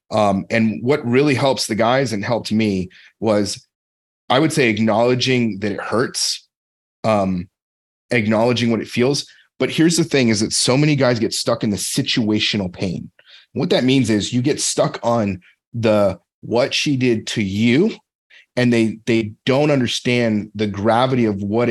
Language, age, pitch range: English, 30-49, 105-125 Hz